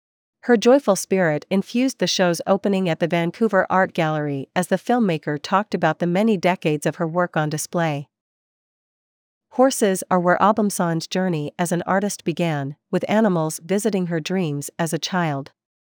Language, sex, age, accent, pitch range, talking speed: English, female, 40-59, American, 160-200 Hz, 160 wpm